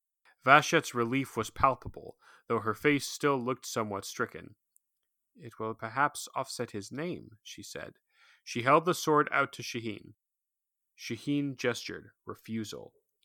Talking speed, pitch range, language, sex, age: 130 wpm, 100-140 Hz, English, male, 30-49